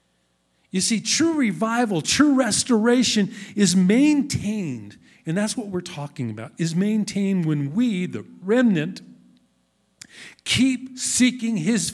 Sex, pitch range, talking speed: male, 175-220 Hz, 115 wpm